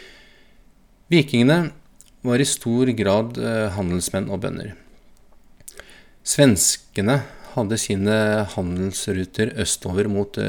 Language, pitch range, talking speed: English, 95-120 Hz, 80 wpm